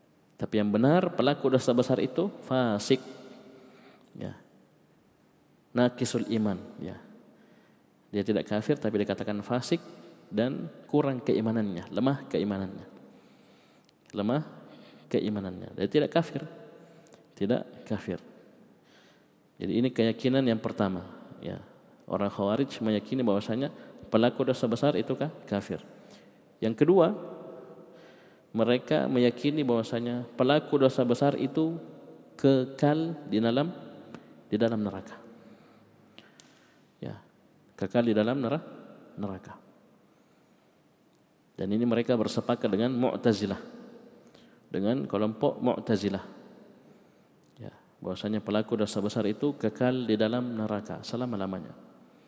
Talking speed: 100 wpm